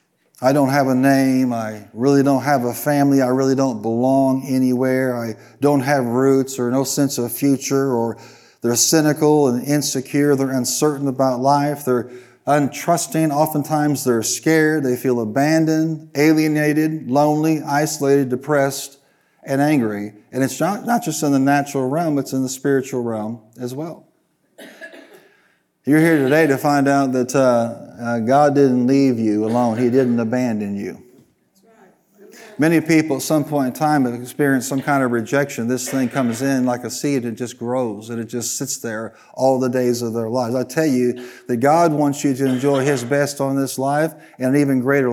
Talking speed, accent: 175 wpm, American